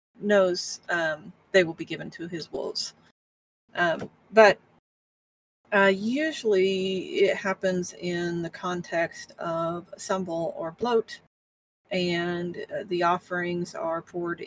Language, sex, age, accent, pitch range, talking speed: English, female, 30-49, American, 165-190 Hz, 120 wpm